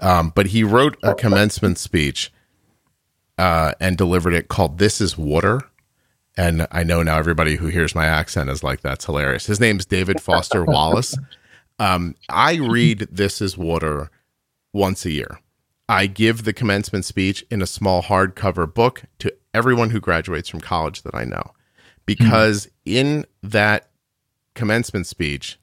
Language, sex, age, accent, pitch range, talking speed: English, male, 40-59, American, 85-105 Hz, 155 wpm